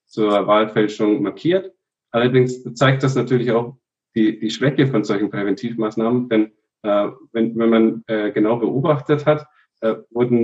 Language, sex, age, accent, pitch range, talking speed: German, male, 40-59, German, 105-125 Hz, 145 wpm